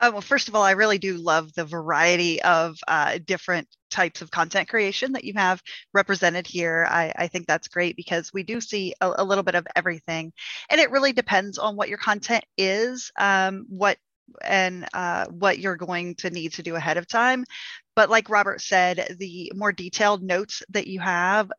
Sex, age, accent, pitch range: female, 20-39, American, 185-220 Hz